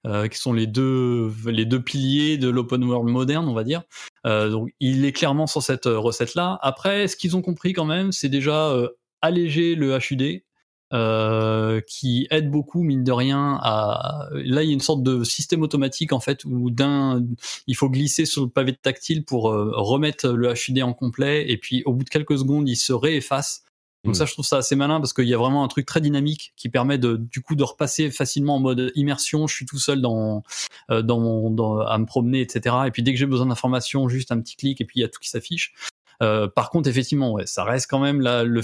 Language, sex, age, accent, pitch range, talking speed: French, male, 20-39, French, 120-145 Hz, 240 wpm